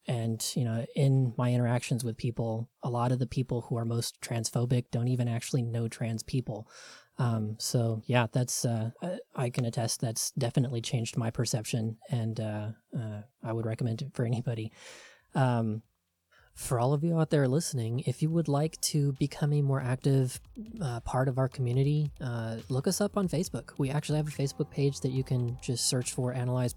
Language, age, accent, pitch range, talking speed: English, 20-39, American, 115-140 Hz, 190 wpm